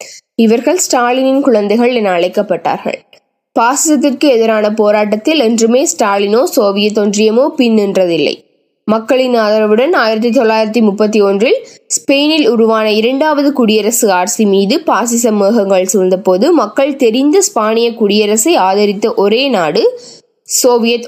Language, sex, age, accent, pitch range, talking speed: Tamil, female, 20-39, native, 200-260 Hz, 95 wpm